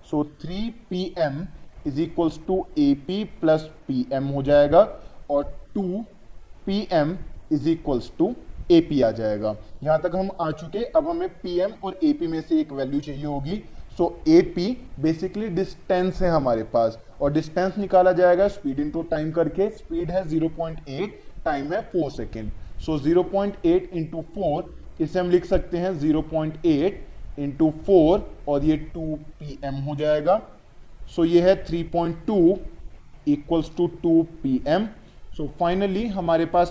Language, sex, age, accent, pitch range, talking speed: Hindi, male, 20-39, native, 150-185 Hz, 160 wpm